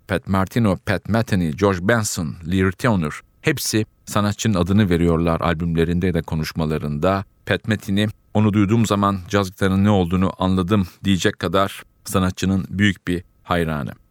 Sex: male